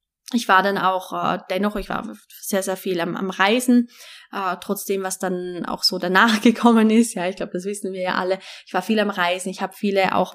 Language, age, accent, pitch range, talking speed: German, 20-39, German, 185-225 Hz, 230 wpm